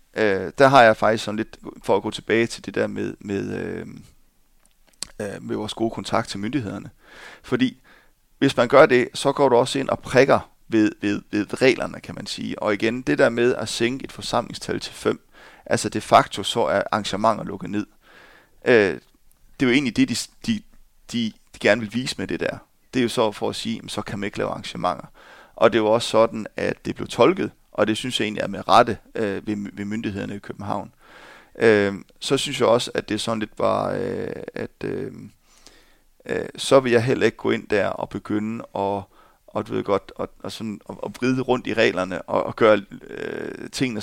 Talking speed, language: 205 wpm, Danish